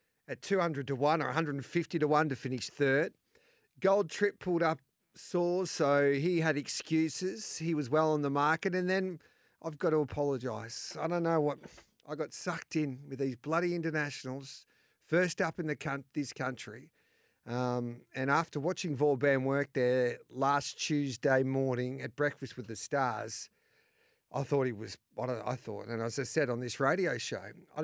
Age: 50-69